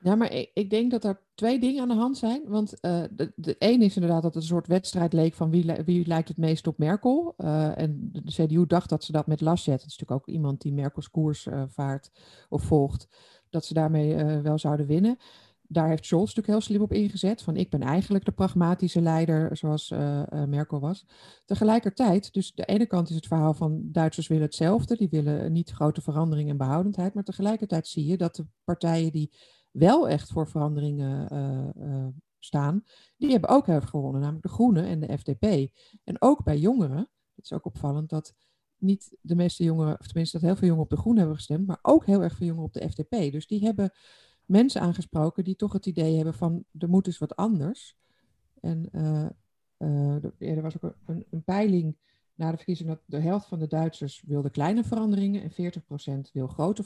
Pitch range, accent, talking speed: 155-195 Hz, Dutch, 210 wpm